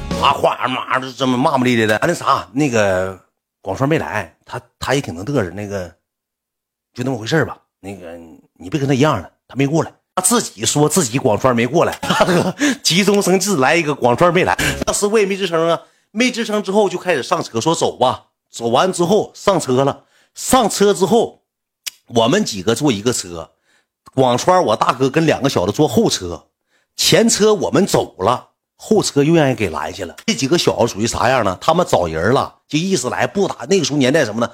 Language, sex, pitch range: Chinese, male, 120-190 Hz